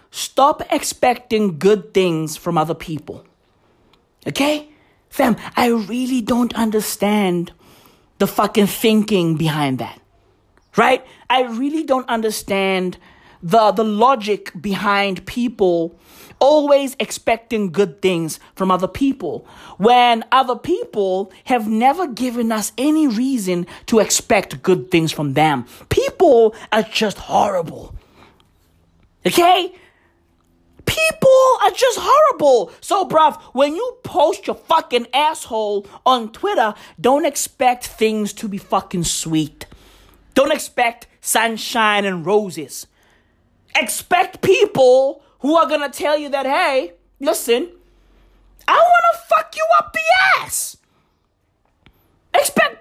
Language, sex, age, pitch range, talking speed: English, male, 30-49, 190-290 Hz, 115 wpm